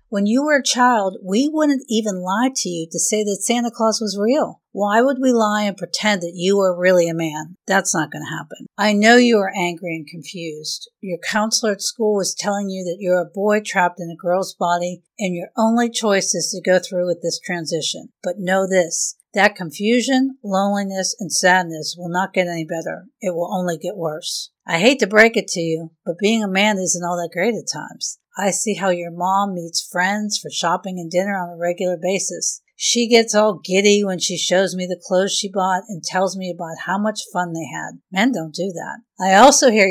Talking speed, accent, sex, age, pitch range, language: 220 wpm, American, female, 50-69, 175-210 Hz, English